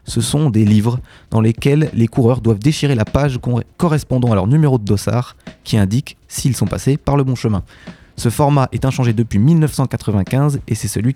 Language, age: French, 20-39